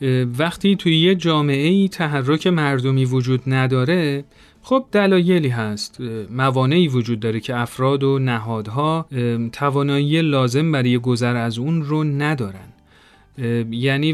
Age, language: 40-59, Persian